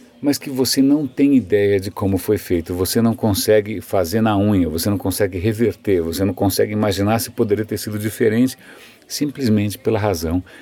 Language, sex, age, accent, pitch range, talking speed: Portuguese, male, 50-69, Brazilian, 105-140 Hz, 180 wpm